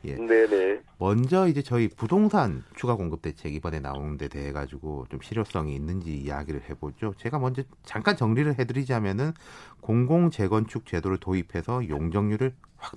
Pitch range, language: 85-130 Hz, Korean